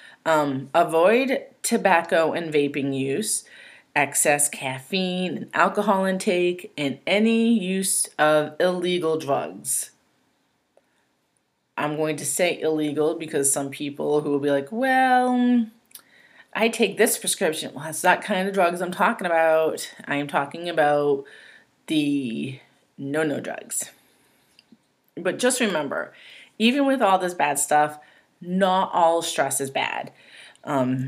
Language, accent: English, American